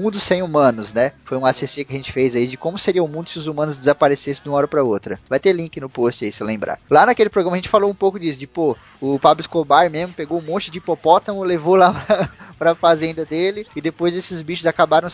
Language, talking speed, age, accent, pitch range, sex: Portuguese, 260 wpm, 20-39, Brazilian, 145-195 Hz, male